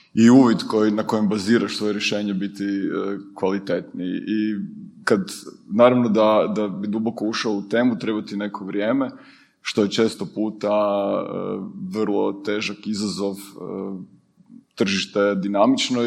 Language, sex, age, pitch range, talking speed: Croatian, male, 30-49, 105-120 Hz, 130 wpm